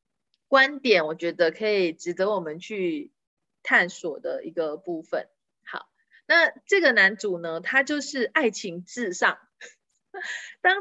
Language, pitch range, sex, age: Chinese, 205-300 Hz, female, 30-49